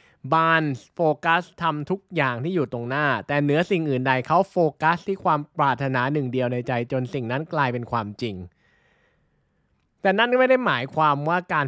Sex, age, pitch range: male, 20-39, 125-170 Hz